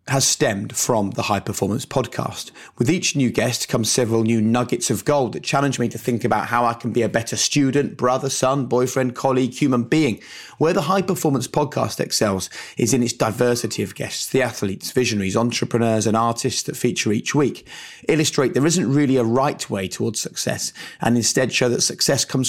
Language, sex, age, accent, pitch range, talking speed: English, male, 30-49, British, 110-140 Hz, 195 wpm